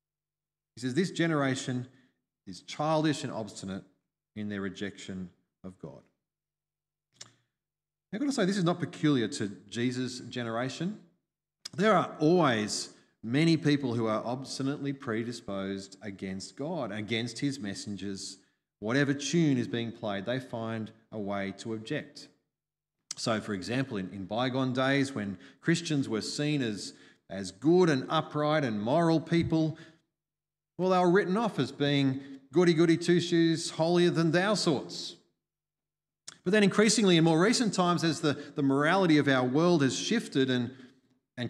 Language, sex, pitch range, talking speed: English, male, 120-160 Hz, 140 wpm